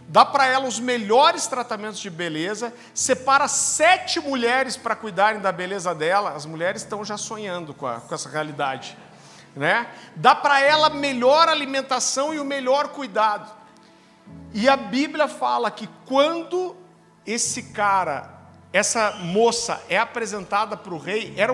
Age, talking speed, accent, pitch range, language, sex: 50-69, 145 wpm, Brazilian, 200-265 Hz, Portuguese, male